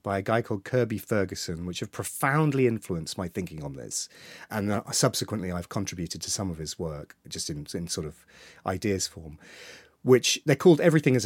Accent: British